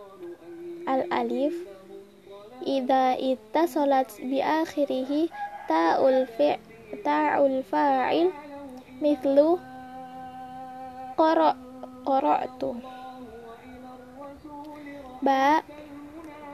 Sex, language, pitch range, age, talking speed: female, Arabic, 250-290 Hz, 20-39, 35 wpm